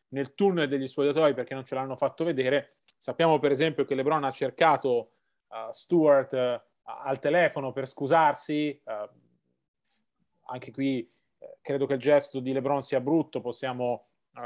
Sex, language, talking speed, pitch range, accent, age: male, Italian, 160 wpm, 130-155 Hz, native, 30-49